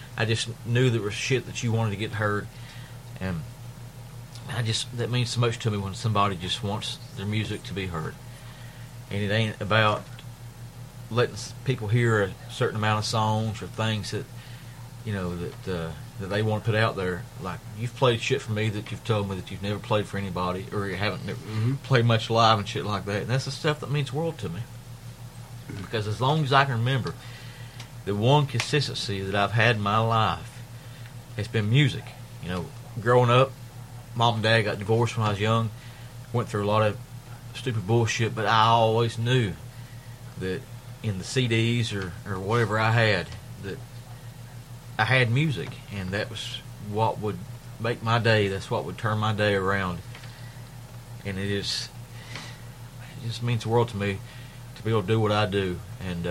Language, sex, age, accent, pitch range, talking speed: English, male, 40-59, American, 105-120 Hz, 195 wpm